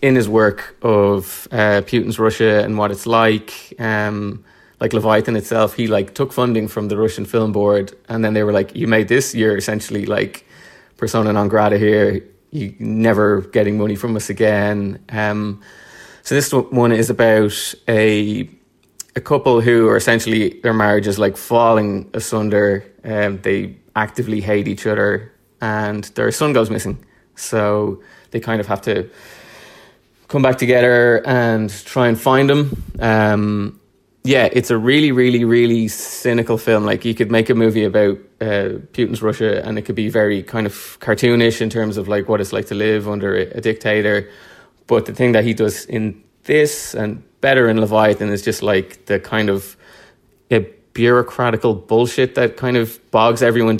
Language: English